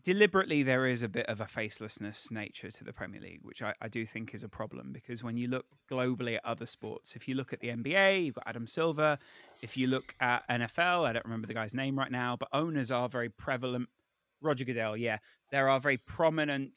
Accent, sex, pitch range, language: British, male, 115-145 Hz, English